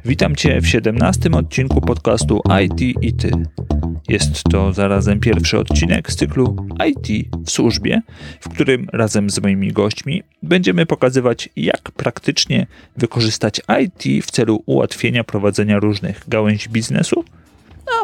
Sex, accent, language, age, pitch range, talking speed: male, native, Polish, 40-59, 95-115 Hz, 130 wpm